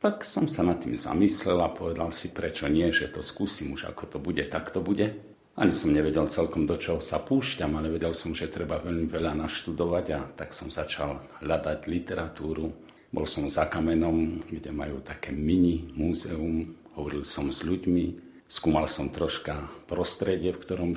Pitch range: 80-90 Hz